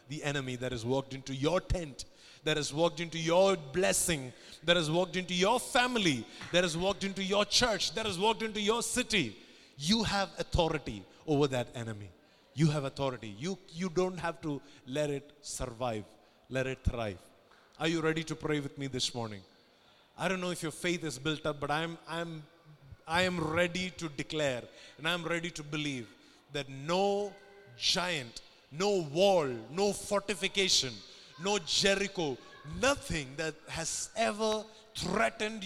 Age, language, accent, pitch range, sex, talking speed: 30-49, English, Indian, 135-185 Hz, male, 165 wpm